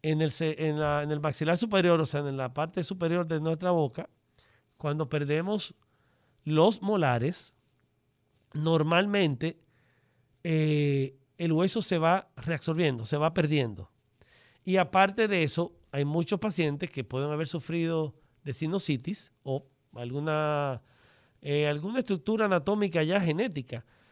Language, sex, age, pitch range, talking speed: Spanish, male, 40-59, 135-185 Hz, 120 wpm